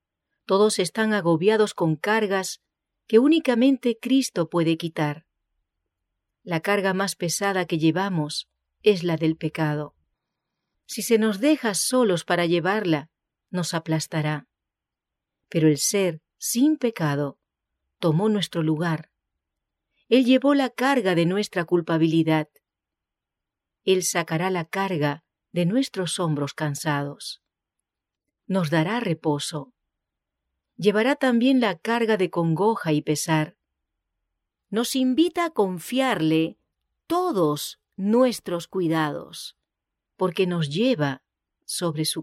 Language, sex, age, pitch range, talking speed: English, female, 40-59, 150-210 Hz, 105 wpm